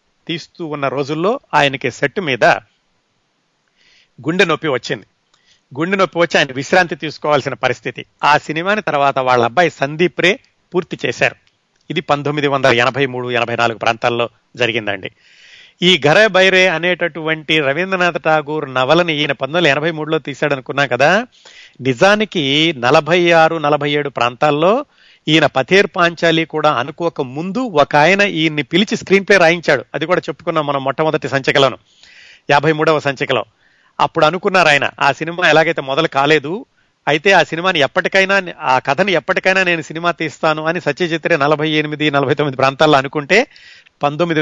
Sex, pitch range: male, 140-170 Hz